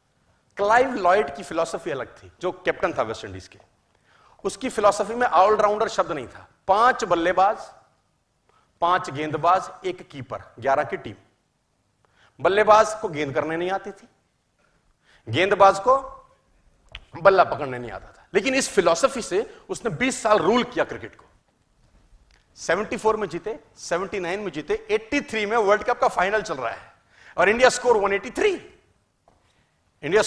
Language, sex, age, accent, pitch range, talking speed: Hindi, male, 40-59, native, 170-255 Hz, 145 wpm